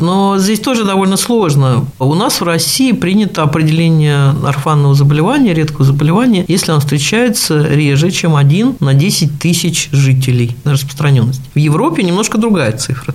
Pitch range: 140-180 Hz